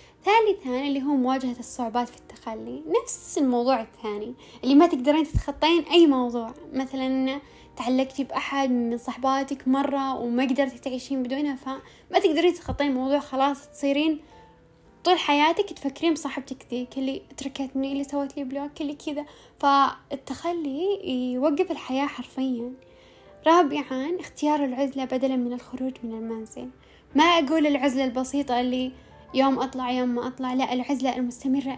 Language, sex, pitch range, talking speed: Arabic, female, 255-300 Hz, 130 wpm